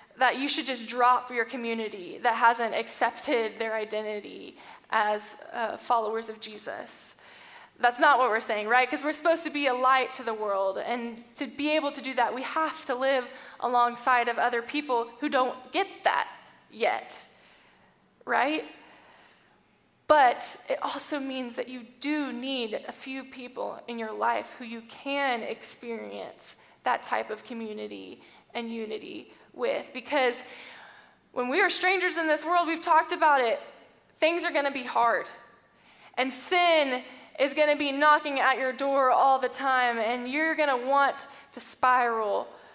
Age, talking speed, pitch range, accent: 10-29, 165 wpm, 235-300 Hz, American